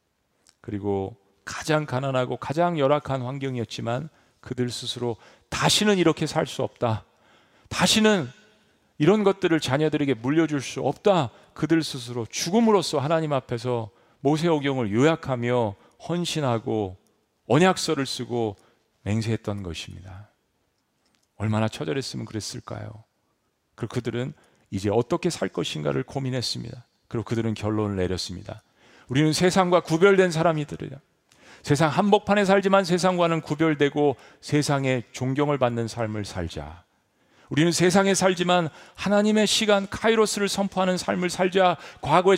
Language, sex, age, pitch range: Korean, male, 40-59, 115-180 Hz